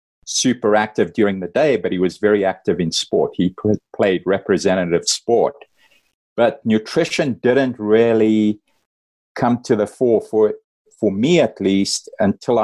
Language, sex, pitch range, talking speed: English, male, 95-110 Hz, 140 wpm